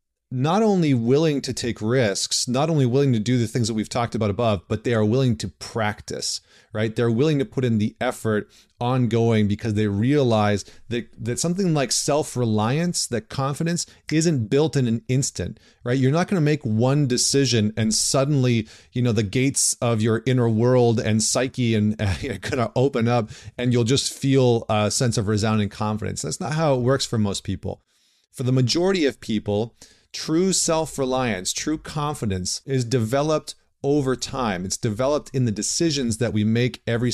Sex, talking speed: male, 185 wpm